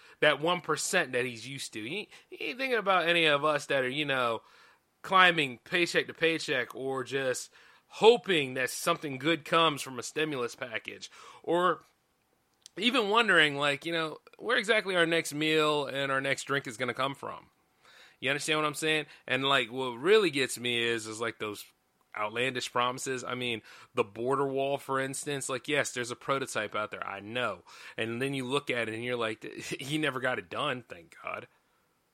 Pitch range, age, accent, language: 120-155 Hz, 30-49, American, English